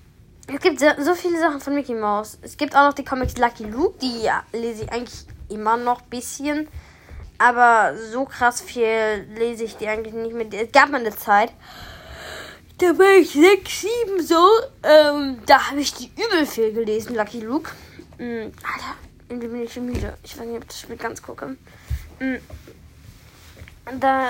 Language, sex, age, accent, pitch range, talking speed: German, female, 10-29, German, 205-260 Hz, 180 wpm